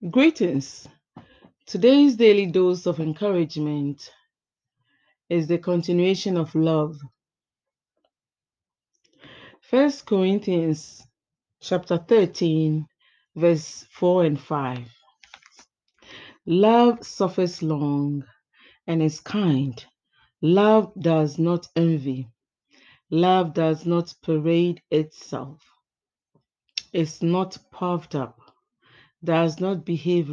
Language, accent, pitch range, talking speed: English, Nigerian, 155-185 Hz, 80 wpm